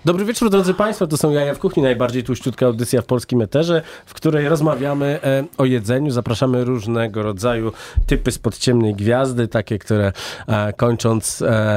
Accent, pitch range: native, 105-130 Hz